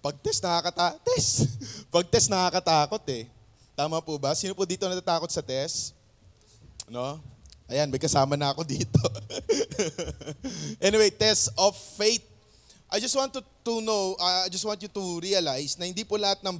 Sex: male